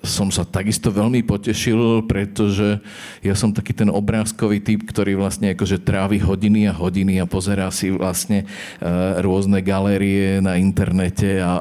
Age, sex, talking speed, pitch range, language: 40-59, male, 150 wpm, 95-105 Hz, Slovak